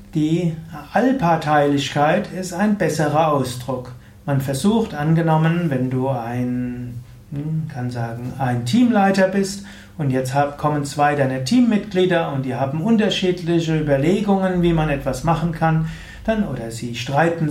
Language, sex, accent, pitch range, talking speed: German, male, German, 135-180 Hz, 125 wpm